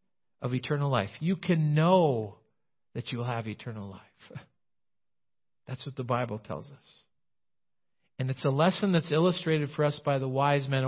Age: 50-69